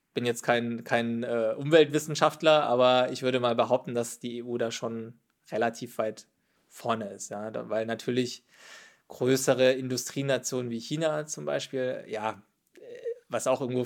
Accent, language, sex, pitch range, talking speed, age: German, German, male, 115-135 Hz, 140 wpm, 20-39